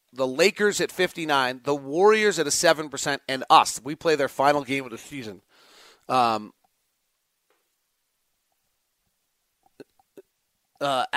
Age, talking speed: 40-59, 115 wpm